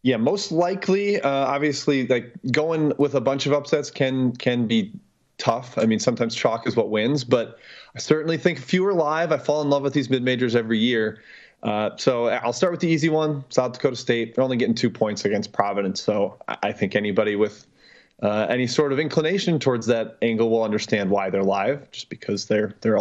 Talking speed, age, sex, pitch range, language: 210 wpm, 20-39, male, 115-150 Hz, English